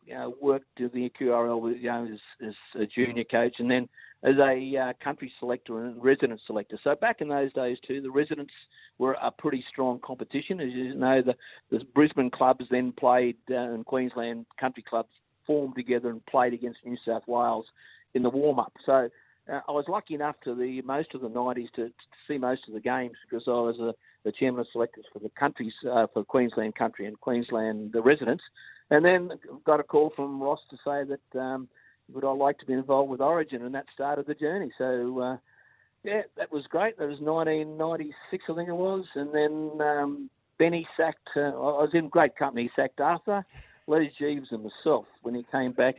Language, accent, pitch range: English, Australian, 120-145 Hz